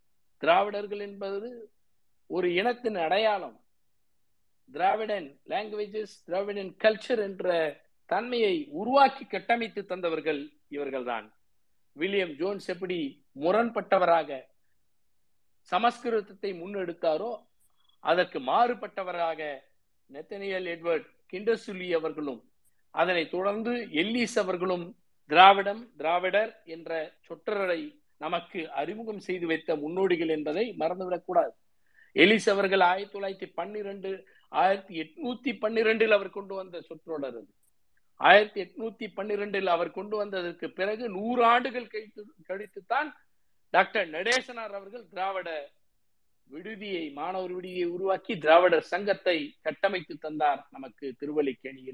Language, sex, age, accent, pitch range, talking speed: Tamil, male, 50-69, native, 165-215 Hz, 85 wpm